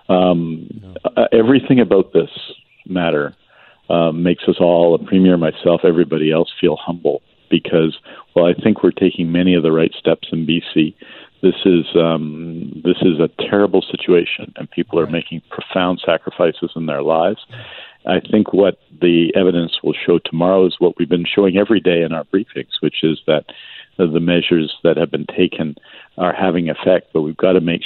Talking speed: 175 wpm